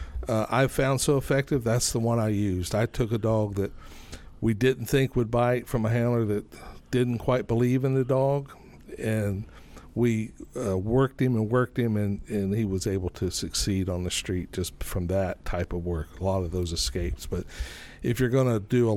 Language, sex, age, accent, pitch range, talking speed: English, male, 60-79, American, 100-130 Hz, 210 wpm